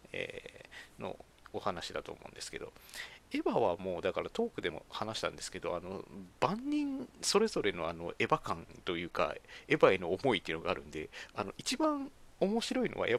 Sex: male